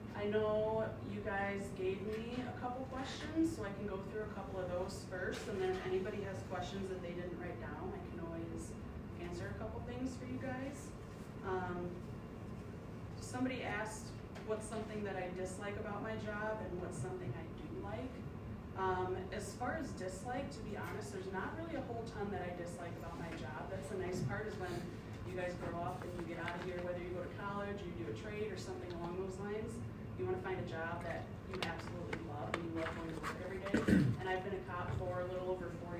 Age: 20-39